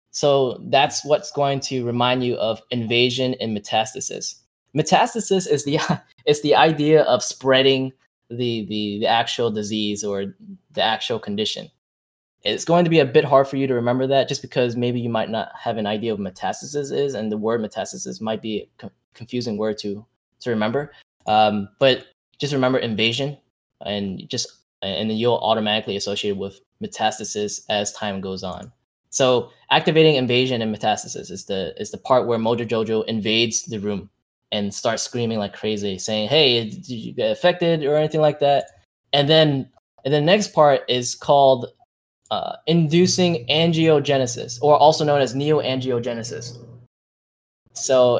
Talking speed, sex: 165 wpm, male